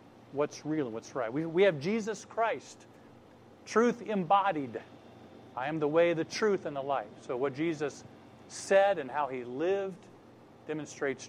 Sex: male